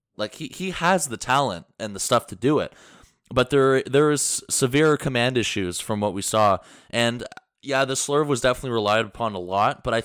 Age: 20-39